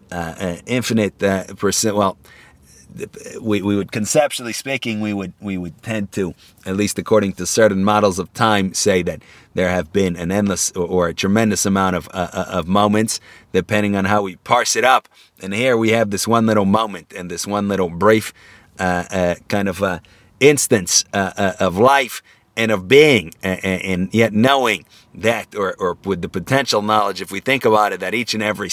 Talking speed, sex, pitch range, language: 195 wpm, male, 95-110 Hz, English